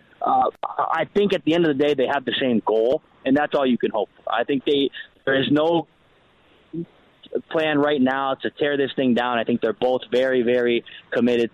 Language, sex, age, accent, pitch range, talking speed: English, male, 20-39, American, 115-145 Hz, 220 wpm